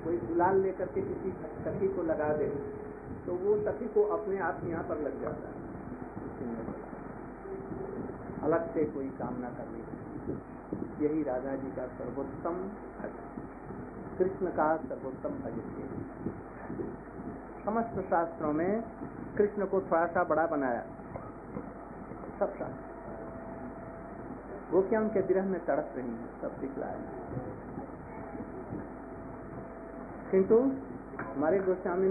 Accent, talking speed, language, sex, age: native, 100 wpm, Hindi, male, 50-69